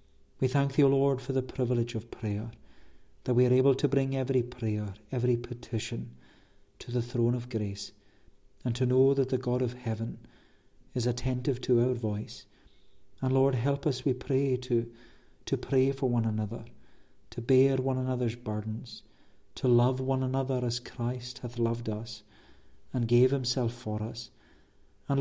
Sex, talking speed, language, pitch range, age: male, 165 wpm, English, 115-135 Hz, 50-69